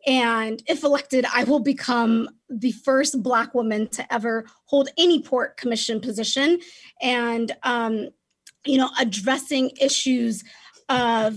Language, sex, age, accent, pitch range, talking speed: English, female, 20-39, American, 235-275 Hz, 125 wpm